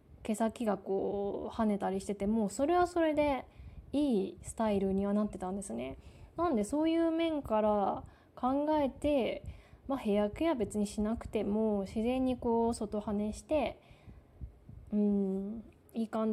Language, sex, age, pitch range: Japanese, female, 20-39, 195-235 Hz